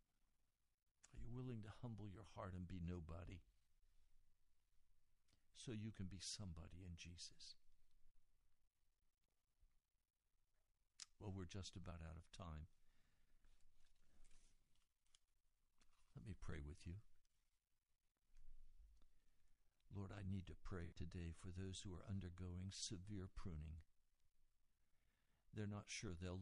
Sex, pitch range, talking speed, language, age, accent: male, 85-105 Hz, 100 wpm, English, 60-79, American